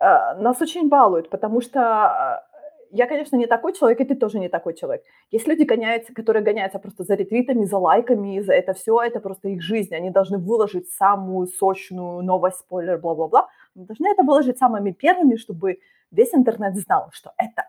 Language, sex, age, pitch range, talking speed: Ukrainian, female, 20-39, 190-255 Hz, 185 wpm